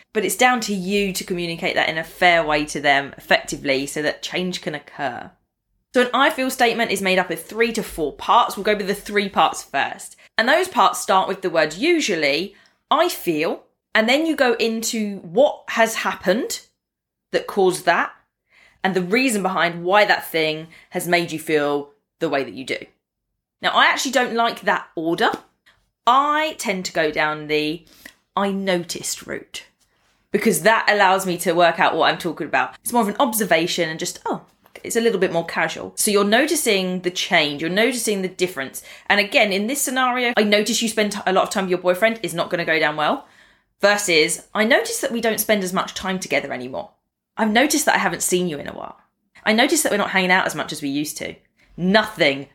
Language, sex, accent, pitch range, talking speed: English, female, British, 165-225 Hz, 210 wpm